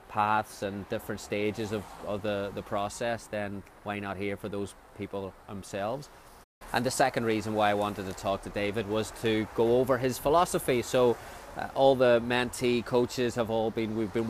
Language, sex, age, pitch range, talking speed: English, male, 20-39, 105-125 Hz, 190 wpm